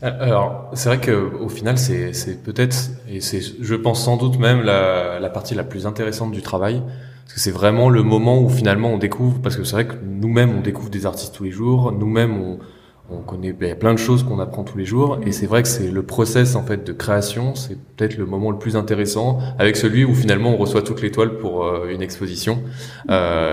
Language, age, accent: French, 20-39, French